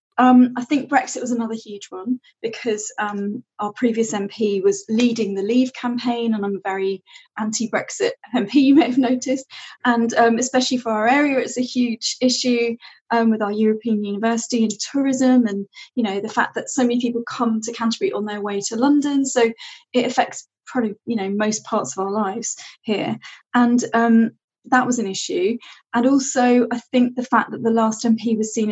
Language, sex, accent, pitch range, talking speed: English, female, British, 215-255 Hz, 190 wpm